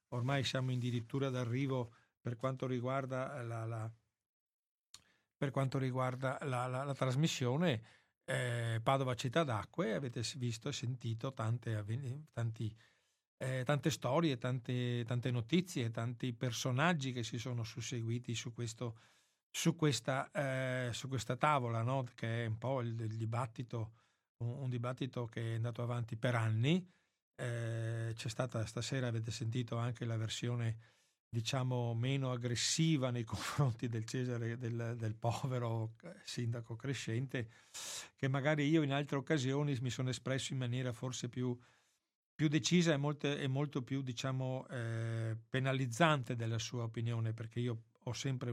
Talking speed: 140 wpm